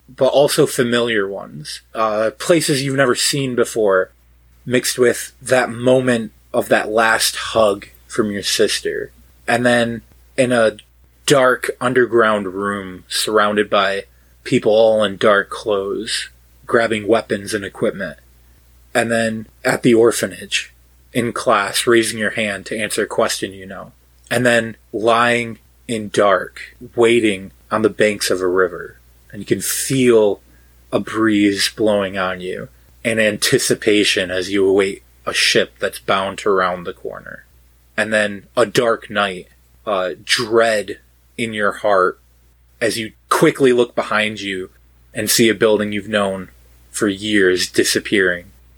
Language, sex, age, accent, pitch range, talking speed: English, male, 20-39, American, 75-120 Hz, 140 wpm